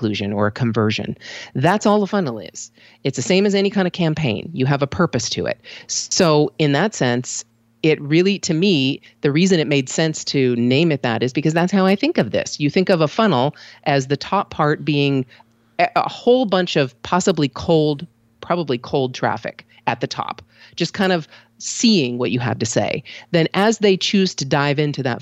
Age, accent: 40-59, American